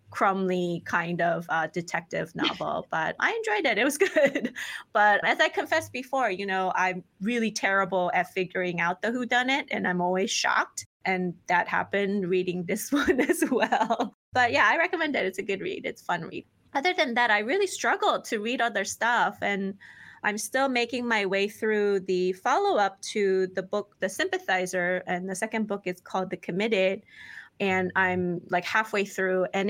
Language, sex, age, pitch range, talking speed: English, female, 20-39, 180-230 Hz, 190 wpm